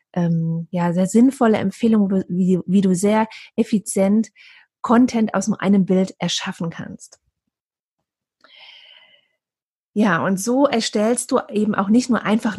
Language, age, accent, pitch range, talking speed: German, 30-49, German, 190-240 Hz, 120 wpm